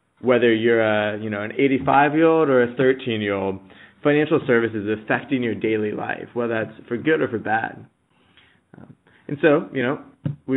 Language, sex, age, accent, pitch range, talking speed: English, male, 20-39, American, 115-140 Hz, 165 wpm